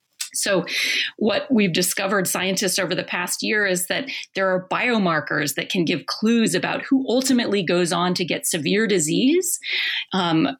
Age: 30-49